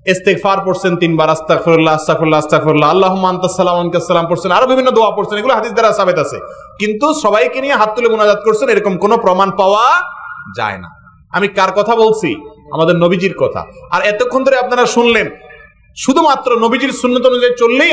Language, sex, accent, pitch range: Bengali, male, native, 175-245 Hz